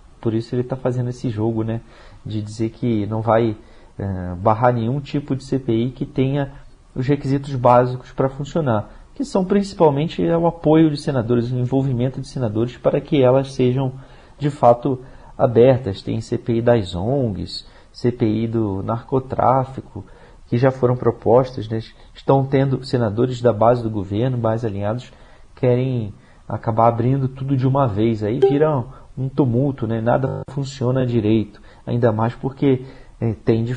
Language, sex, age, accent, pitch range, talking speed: Portuguese, male, 40-59, Brazilian, 115-135 Hz, 155 wpm